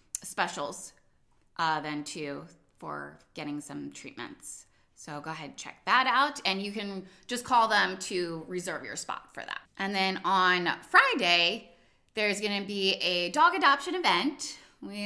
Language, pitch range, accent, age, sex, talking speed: English, 170-230 Hz, American, 20-39, female, 160 wpm